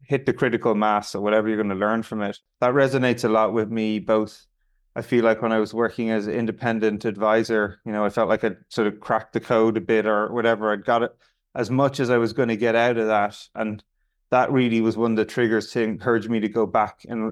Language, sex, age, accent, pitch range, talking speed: English, male, 20-39, Irish, 110-120 Hz, 255 wpm